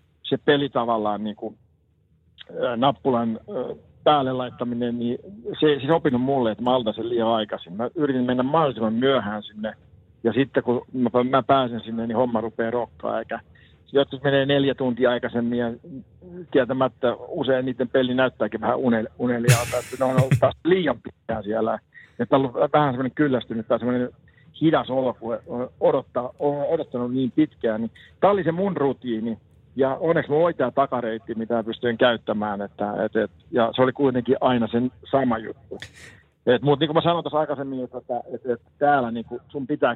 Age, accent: 50-69, native